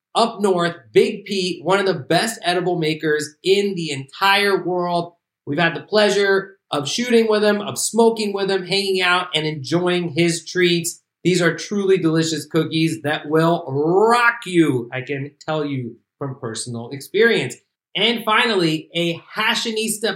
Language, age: English, 30-49